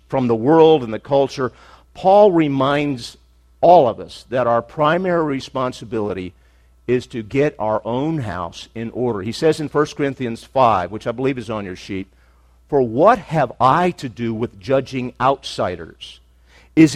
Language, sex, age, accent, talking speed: English, male, 50-69, American, 165 wpm